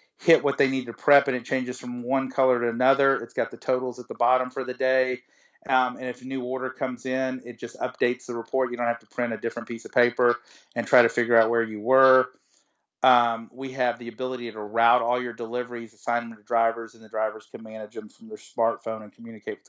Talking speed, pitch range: 245 wpm, 115-130 Hz